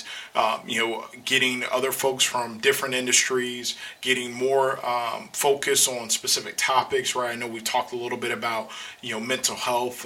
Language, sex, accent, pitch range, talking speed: English, male, American, 110-125 Hz, 175 wpm